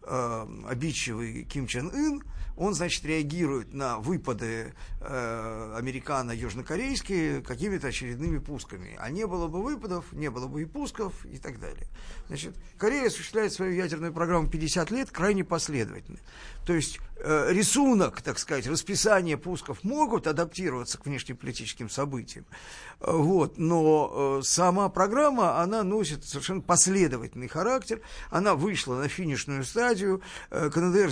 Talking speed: 125 wpm